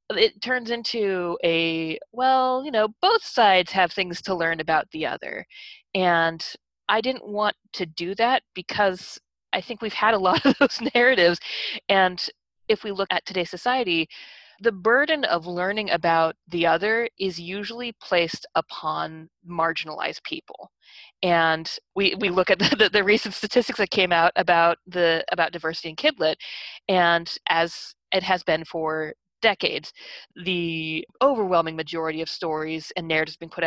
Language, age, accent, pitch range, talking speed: English, 30-49, American, 165-220 Hz, 155 wpm